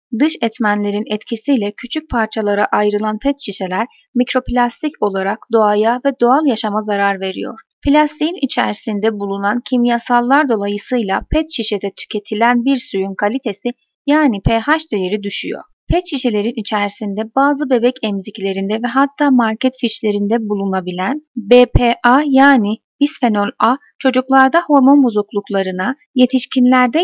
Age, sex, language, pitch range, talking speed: 30-49, female, Turkish, 210-270 Hz, 110 wpm